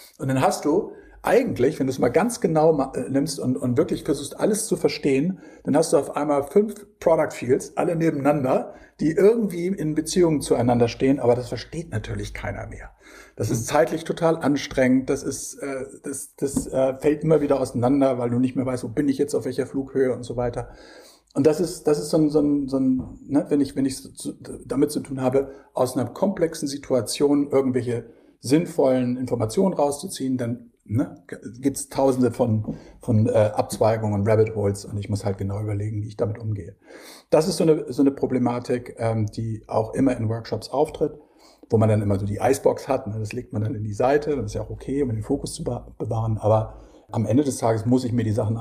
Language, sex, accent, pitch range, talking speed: German, male, German, 110-145 Hz, 210 wpm